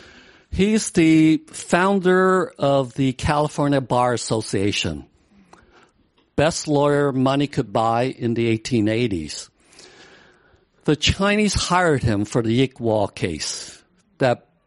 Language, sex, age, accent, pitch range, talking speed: English, male, 60-79, American, 125-170 Hz, 100 wpm